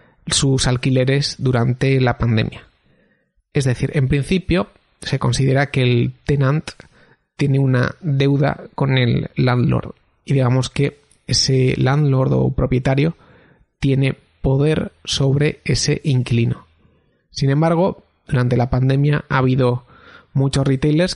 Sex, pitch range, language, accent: male, 125-150 Hz, Spanish, Spanish